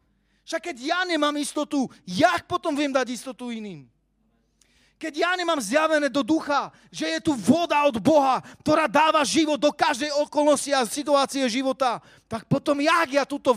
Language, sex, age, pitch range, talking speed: Slovak, male, 40-59, 235-315 Hz, 165 wpm